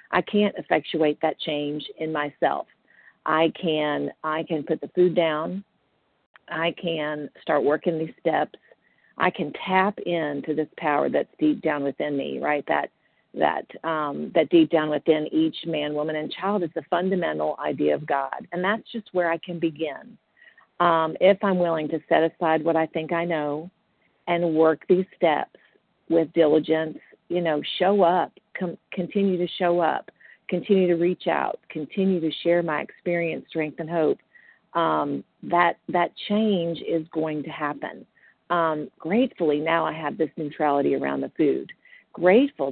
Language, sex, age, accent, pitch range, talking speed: English, female, 50-69, American, 150-180 Hz, 160 wpm